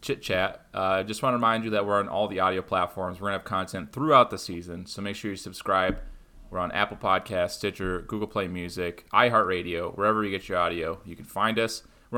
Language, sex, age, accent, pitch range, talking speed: English, male, 30-49, American, 95-120 Hz, 225 wpm